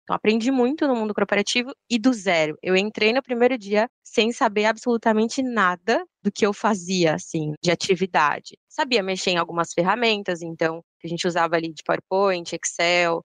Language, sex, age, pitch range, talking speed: Portuguese, female, 20-39, 175-215 Hz, 170 wpm